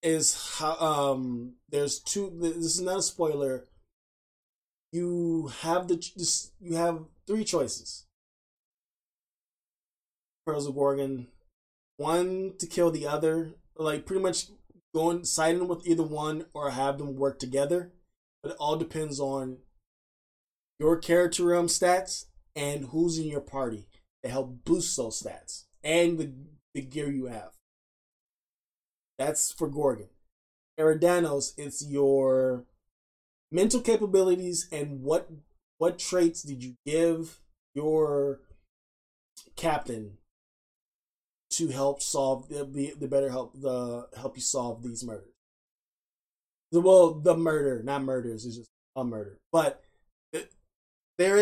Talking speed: 125 wpm